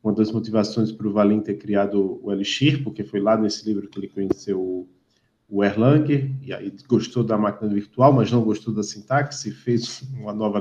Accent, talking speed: Brazilian, 190 wpm